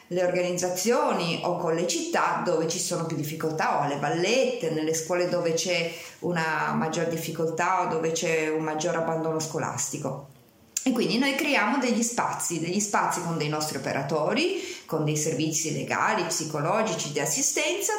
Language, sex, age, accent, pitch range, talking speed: Italian, female, 30-49, native, 160-210 Hz, 155 wpm